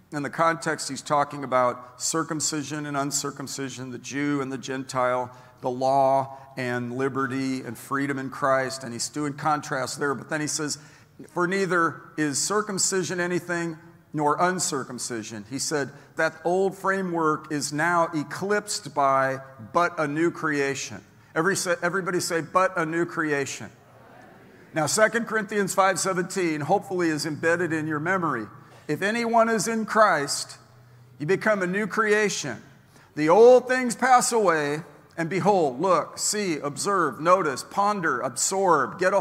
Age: 50-69